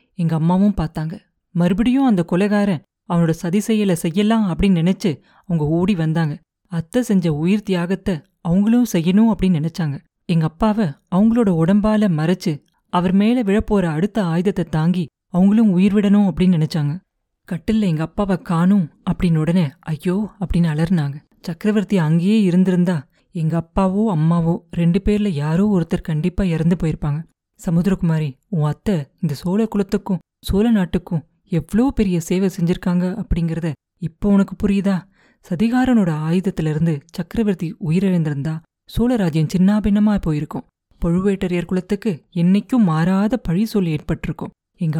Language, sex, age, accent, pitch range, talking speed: Tamil, female, 30-49, native, 165-205 Hz, 120 wpm